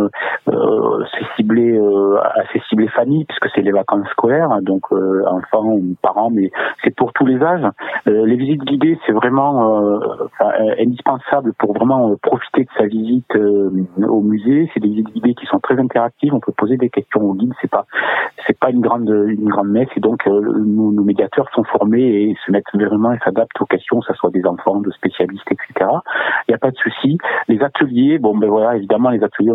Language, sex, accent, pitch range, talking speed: French, male, French, 105-135 Hz, 210 wpm